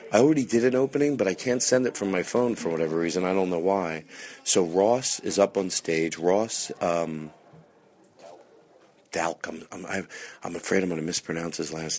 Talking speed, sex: 190 wpm, male